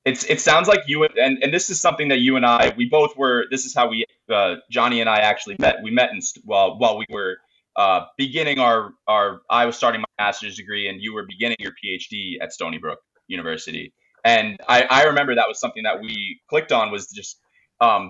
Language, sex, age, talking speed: English, male, 20-39, 225 wpm